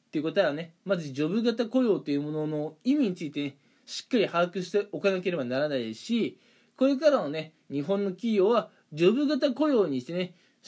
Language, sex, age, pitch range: Japanese, male, 20-39, 170-250 Hz